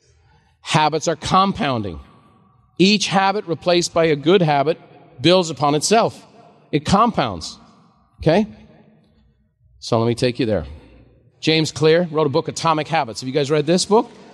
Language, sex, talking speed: English, male, 145 wpm